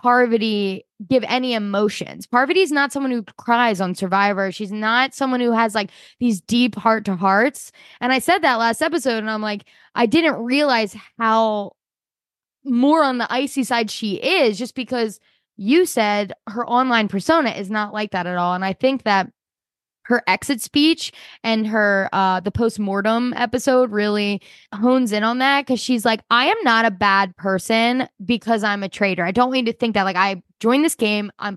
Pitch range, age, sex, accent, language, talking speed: 200-255 Hz, 10-29, female, American, English, 185 wpm